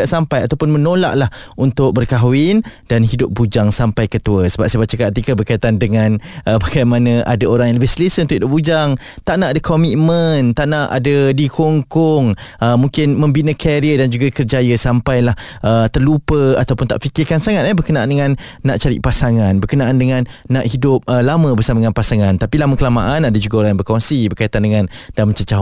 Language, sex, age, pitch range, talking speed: Malay, male, 20-39, 115-155 Hz, 175 wpm